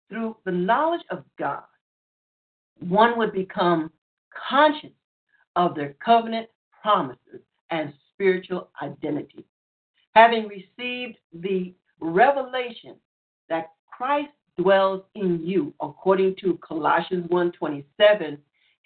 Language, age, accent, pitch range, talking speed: English, 60-79, American, 170-230 Hz, 90 wpm